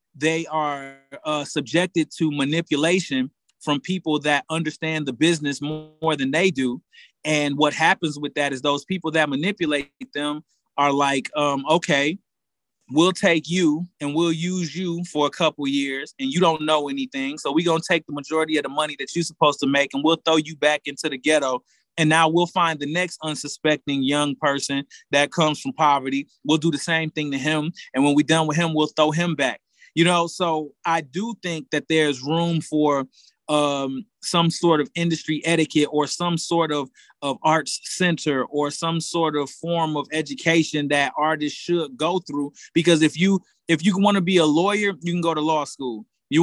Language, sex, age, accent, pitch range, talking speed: English, male, 30-49, American, 145-175 Hz, 200 wpm